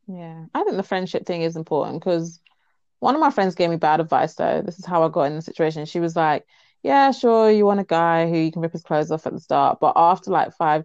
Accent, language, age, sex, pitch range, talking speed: British, English, 20-39, female, 155-190 Hz, 270 wpm